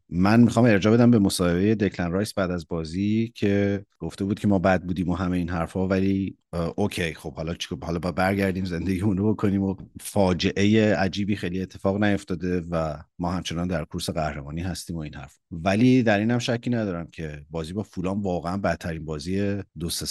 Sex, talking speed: male, 195 wpm